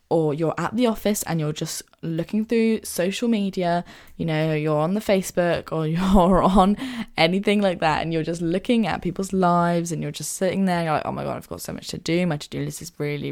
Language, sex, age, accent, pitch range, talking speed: English, female, 10-29, British, 160-205 Hz, 235 wpm